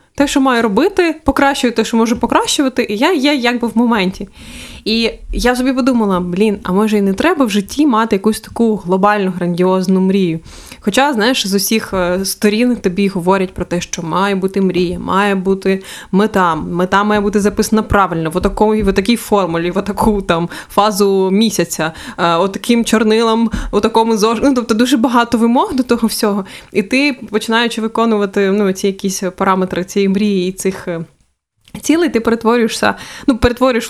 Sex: female